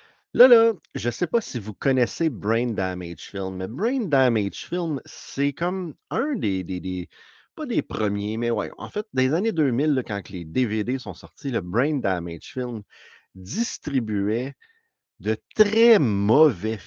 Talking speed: 170 wpm